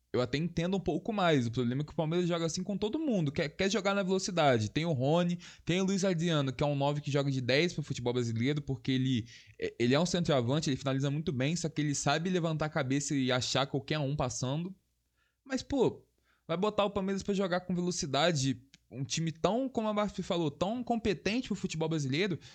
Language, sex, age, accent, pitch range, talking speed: Portuguese, male, 20-39, Brazilian, 135-190 Hz, 225 wpm